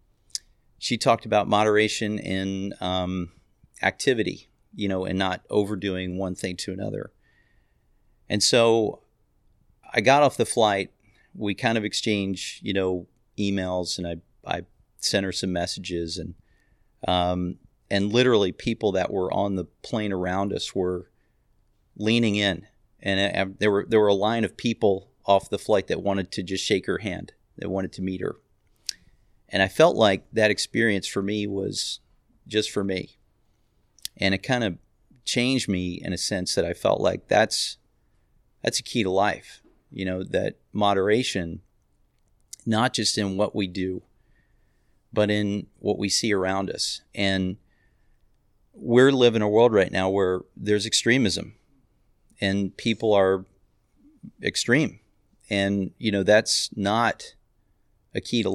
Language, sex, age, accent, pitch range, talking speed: English, male, 40-59, American, 95-105 Hz, 150 wpm